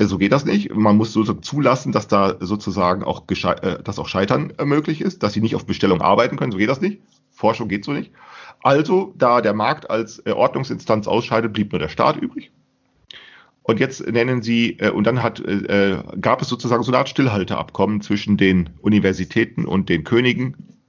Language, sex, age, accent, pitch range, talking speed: German, male, 40-59, German, 95-115 Hz, 185 wpm